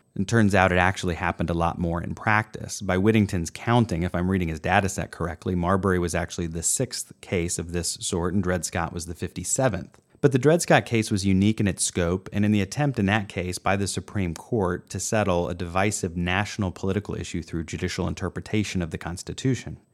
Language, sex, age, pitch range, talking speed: English, male, 30-49, 85-105 Hz, 210 wpm